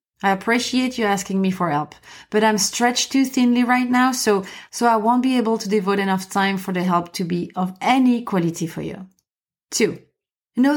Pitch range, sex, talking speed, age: 190-240 Hz, female, 200 wpm, 30-49